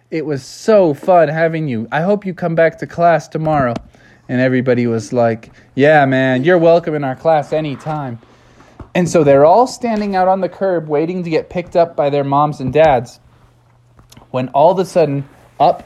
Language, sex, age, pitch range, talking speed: English, male, 20-39, 125-170 Hz, 195 wpm